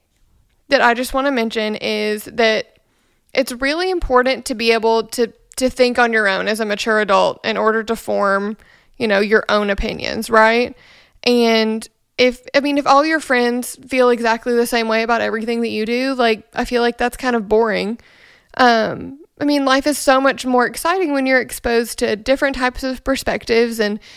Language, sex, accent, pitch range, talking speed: English, female, American, 220-260 Hz, 195 wpm